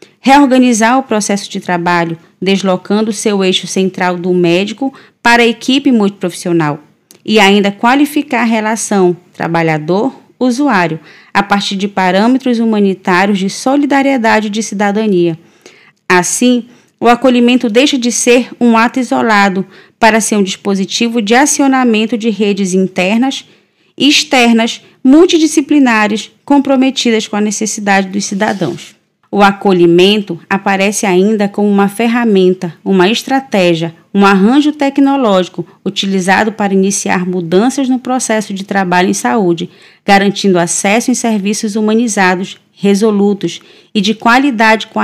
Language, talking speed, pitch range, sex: Portuguese, 120 wpm, 190-240 Hz, female